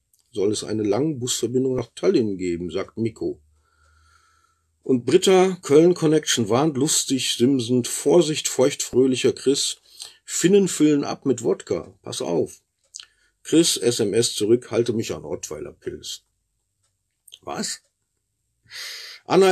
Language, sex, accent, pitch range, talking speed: German, male, German, 115-170 Hz, 110 wpm